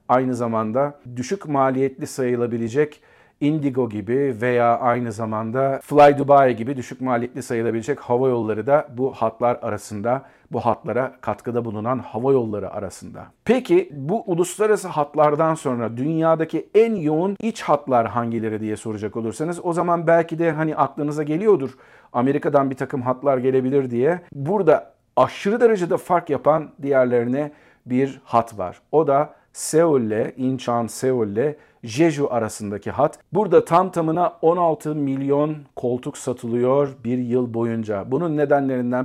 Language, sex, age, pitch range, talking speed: Turkish, male, 50-69, 120-155 Hz, 130 wpm